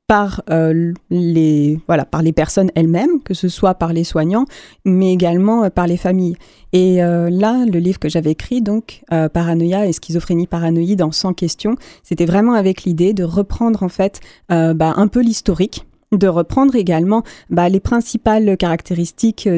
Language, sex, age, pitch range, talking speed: French, female, 30-49, 170-215 Hz, 175 wpm